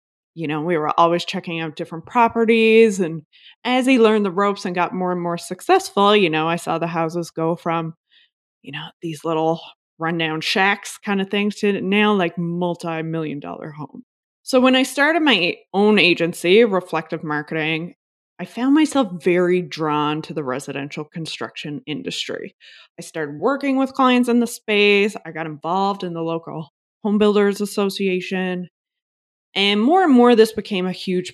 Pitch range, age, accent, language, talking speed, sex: 165-220 Hz, 20-39, American, English, 165 wpm, female